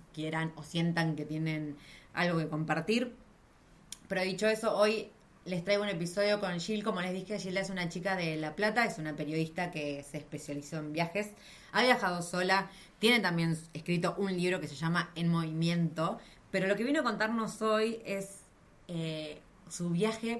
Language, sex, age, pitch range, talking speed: Spanish, female, 20-39, 155-190 Hz, 175 wpm